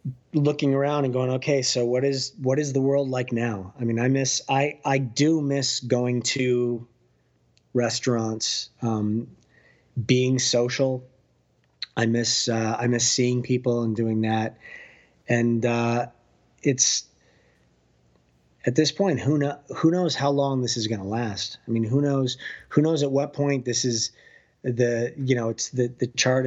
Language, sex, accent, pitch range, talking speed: English, male, American, 115-135 Hz, 165 wpm